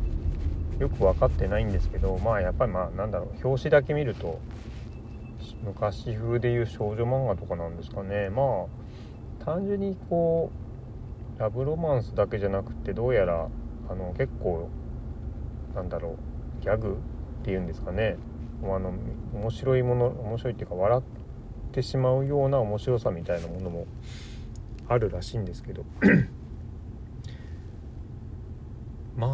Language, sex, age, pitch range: Japanese, male, 40-59, 95-125 Hz